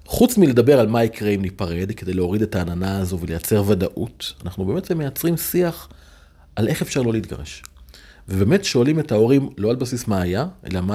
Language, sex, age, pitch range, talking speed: Hebrew, male, 40-59, 95-140 Hz, 185 wpm